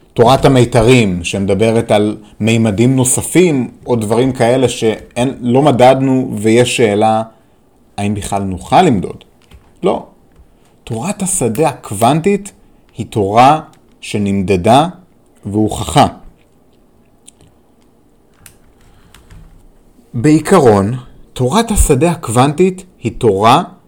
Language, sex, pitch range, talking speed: Hebrew, male, 110-160 Hz, 80 wpm